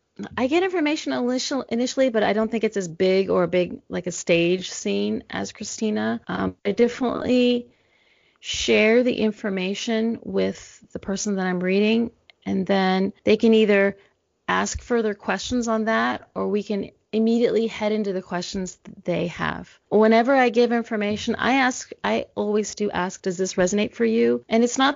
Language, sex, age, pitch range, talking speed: English, female, 30-49, 195-230 Hz, 170 wpm